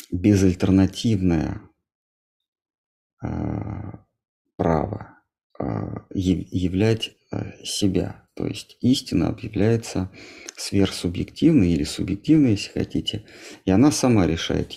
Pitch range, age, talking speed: 95-115 Hz, 50-69, 70 wpm